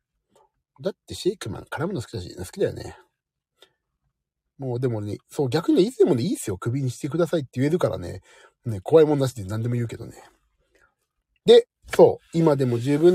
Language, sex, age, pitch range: Japanese, male, 40-59, 115-155 Hz